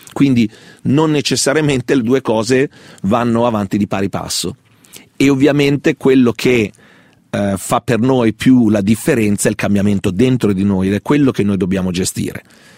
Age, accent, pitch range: 40-59, native, 105-125 Hz